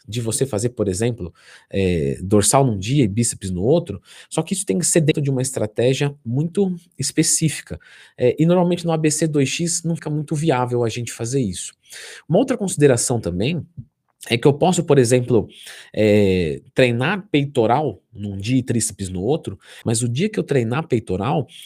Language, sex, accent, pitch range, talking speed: Portuguese, male, Brazilian, 120-160 Hz, 170 wpm